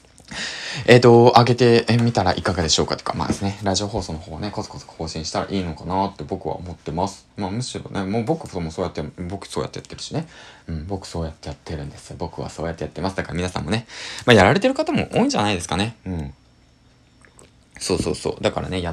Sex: male